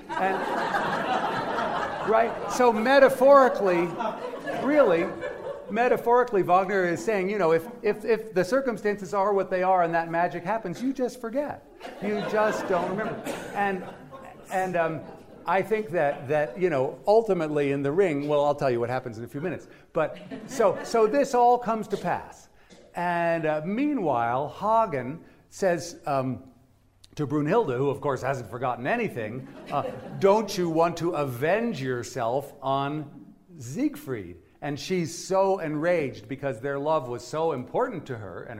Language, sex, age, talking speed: English, male, 50-69, 150 wpm